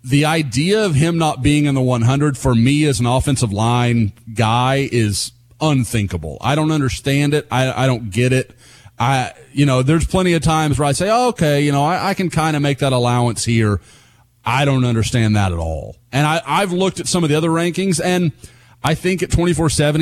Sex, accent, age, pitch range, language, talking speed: male, American, 30-49, 120-155 Hz, English, 215 wpm